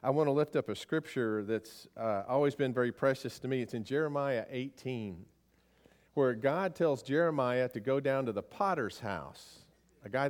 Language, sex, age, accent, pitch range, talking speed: English, male, 40-59, American, 105-145 Hz, 185 wpm